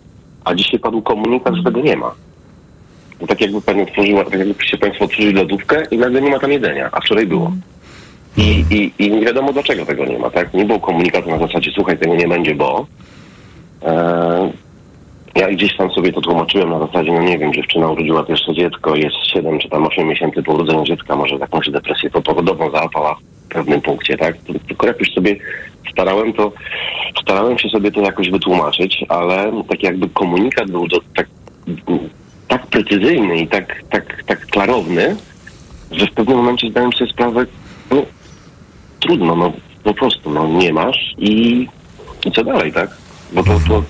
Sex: male